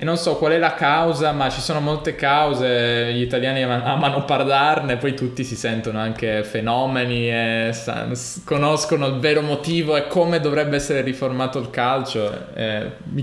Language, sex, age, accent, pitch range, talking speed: Italian, male, 20-39, native, 110-130 Hz, 165 wpm